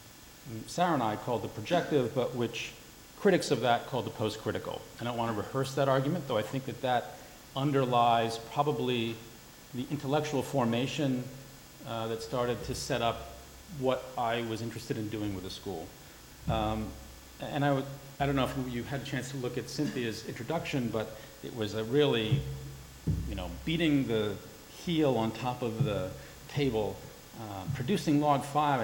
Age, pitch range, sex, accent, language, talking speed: 40-59, 110-135 Hz, male, American, German, 170 wpm